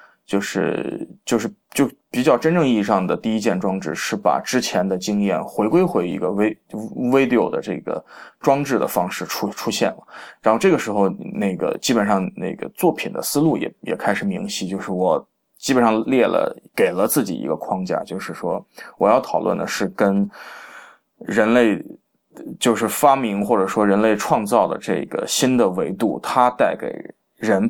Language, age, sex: Chinese, 20-39, male